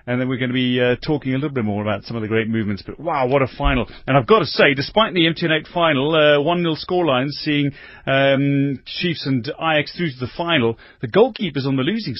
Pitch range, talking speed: 120-155 Hz, 240 wpm